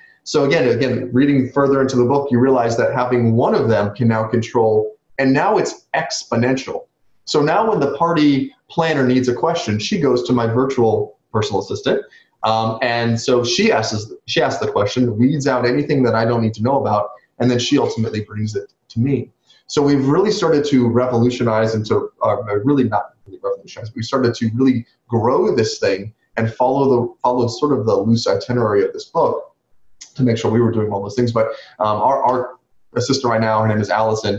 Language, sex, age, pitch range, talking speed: English, male, 30-49, 110-135 Hz, 200 wpm